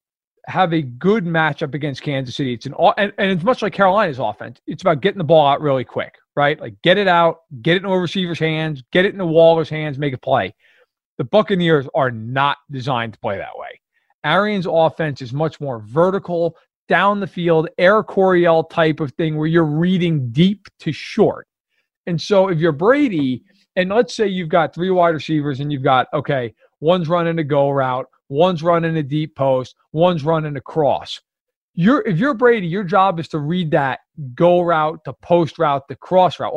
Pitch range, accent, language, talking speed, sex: 140-180 Hz, American, English, 200 wpm, male